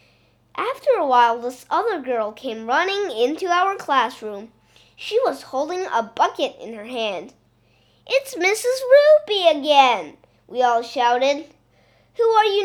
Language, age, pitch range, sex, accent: Chinese, 20-39, 245-375 Hz, female, American